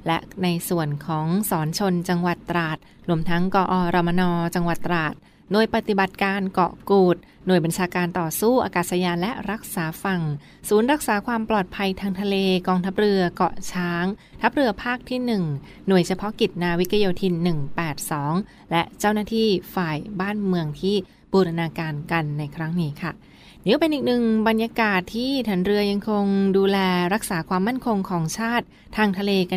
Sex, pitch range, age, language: female, 175-205 Hz, 20-39, Thai